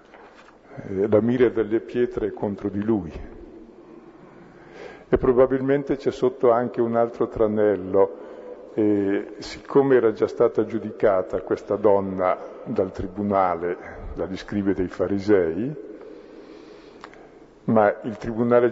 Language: Italian